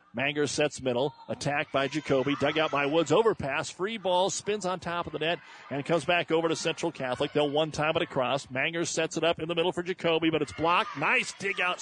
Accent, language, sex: American, English, male